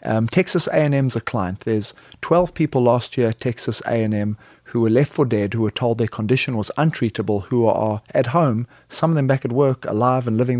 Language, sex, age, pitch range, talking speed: English, male, 30-49, 115-155 Hz, 225 wpm